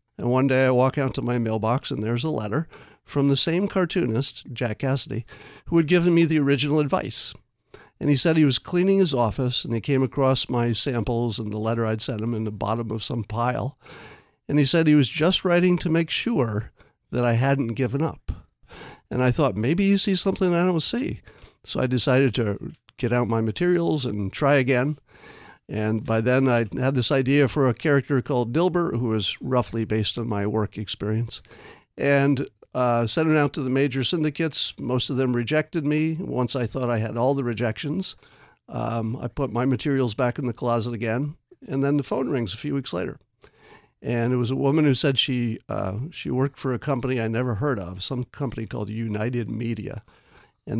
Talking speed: 205 wpm